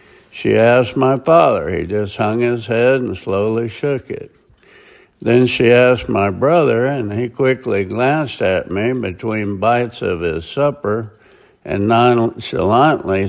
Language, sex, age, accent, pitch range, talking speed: English, male, 60-79, American, 105-130 Hz, 140 wpm